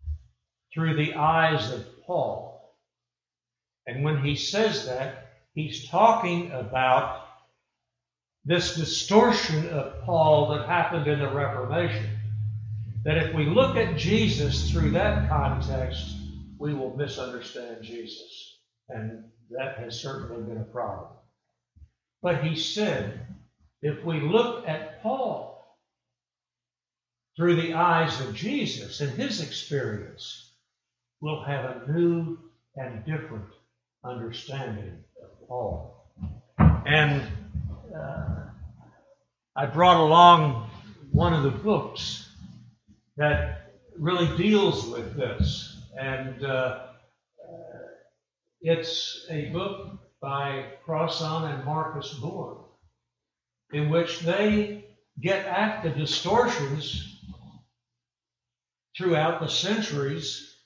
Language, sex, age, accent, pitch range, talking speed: English, male, 60-79, American, 115-160 Hz, 100 wpm